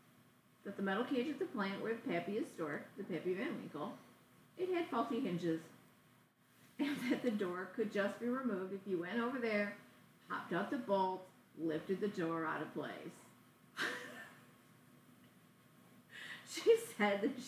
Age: 40-59